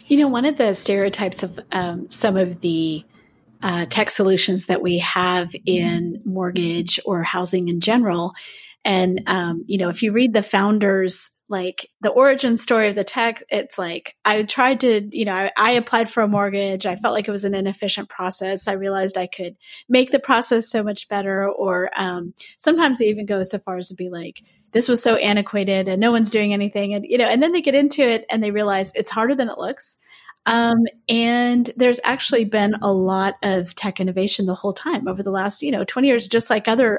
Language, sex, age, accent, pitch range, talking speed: English, female, 30-49, American, 185-230 Hz, 210 wpm